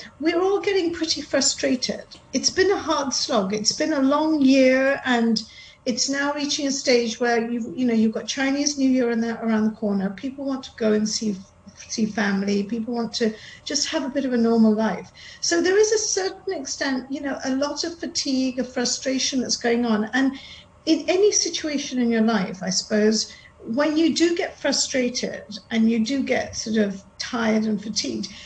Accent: British